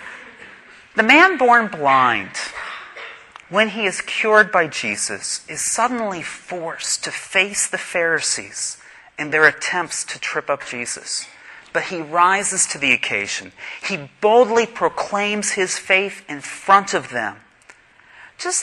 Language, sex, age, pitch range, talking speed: English, male, 40-59, 170-225 Hz, 130 wpm